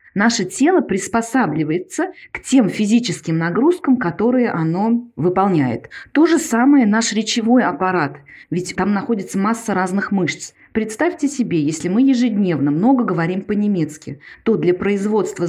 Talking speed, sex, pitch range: 130 wpm, female, 180-240 Hz